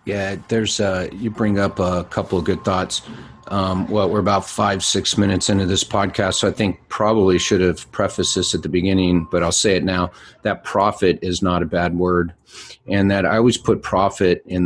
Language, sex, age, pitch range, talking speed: English, male, 40-59, 90-100 Hz, 205 wpm